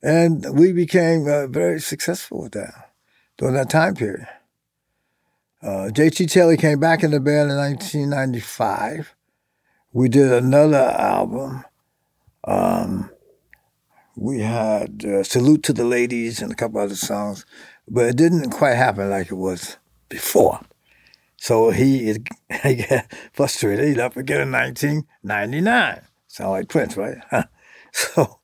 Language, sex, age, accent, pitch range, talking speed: English, male, 60-79, American, 110-160 Hz, 135 wpm